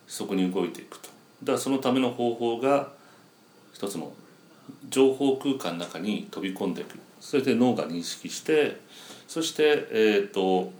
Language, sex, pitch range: Japanese, male, 95-150 Hz